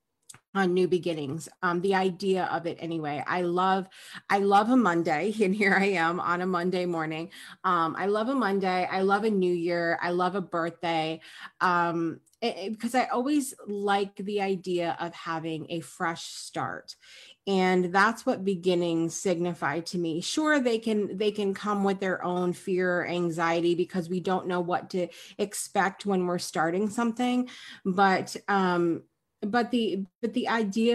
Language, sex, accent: English, female, American